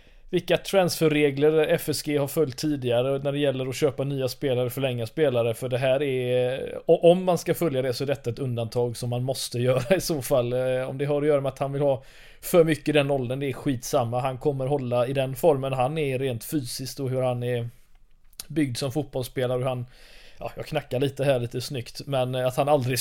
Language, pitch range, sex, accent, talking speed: Swedish, 125-150 Hz, male, native, 220 wpm